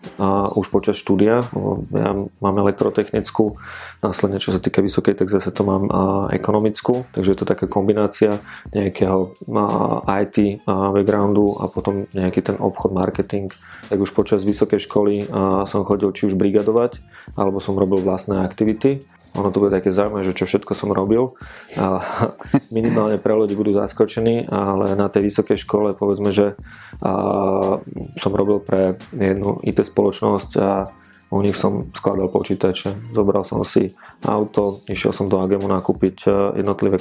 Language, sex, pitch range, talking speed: Slovak, male, 95-105 Hz, 145 wpm